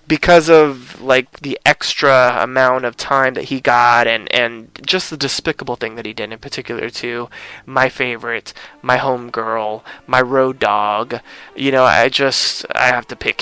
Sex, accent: male, American